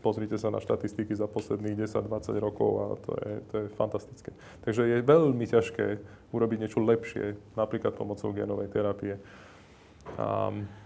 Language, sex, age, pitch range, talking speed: Slovak, male, 20-39, 105-120 Hz, 145 wpm